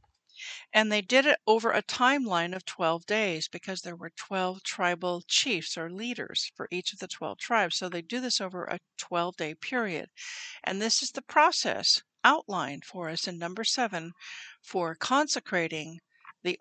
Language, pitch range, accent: English, 180-235 Hz, American